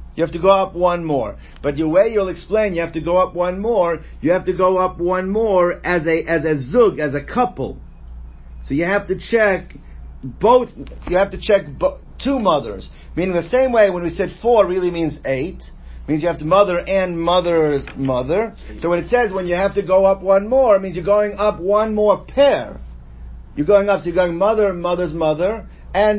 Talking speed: 220 wpm